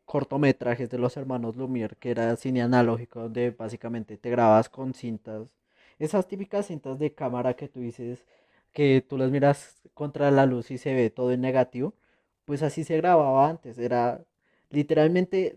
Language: Spanish